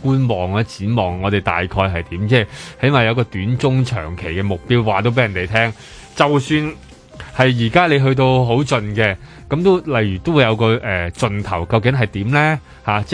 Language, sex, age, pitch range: Chinese, male, 20-39, 105-145 Hz